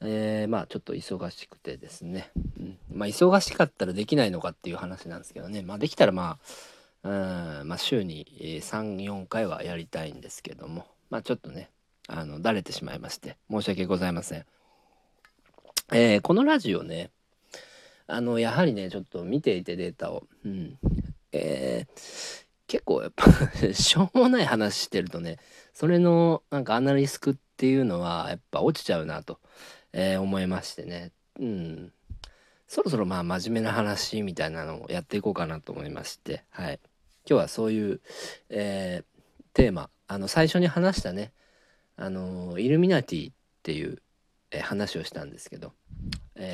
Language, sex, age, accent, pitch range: Japanese, male, 40-59, native, 90-140 Hz